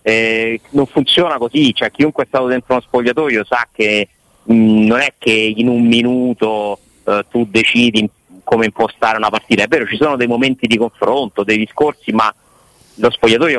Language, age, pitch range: Italian, 30-49, 105-130 Hz